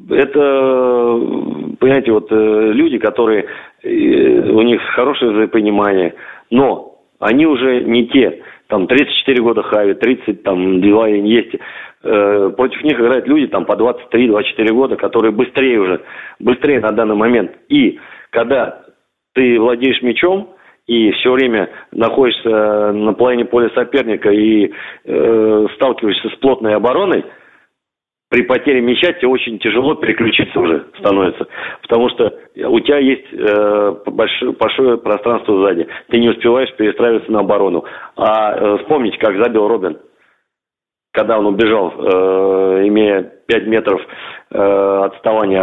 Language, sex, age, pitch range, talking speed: Russian, male, 40-59, 105-135 Hz, 130 wpm